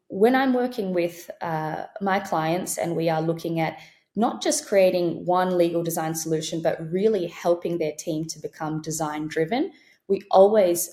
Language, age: English, 20-39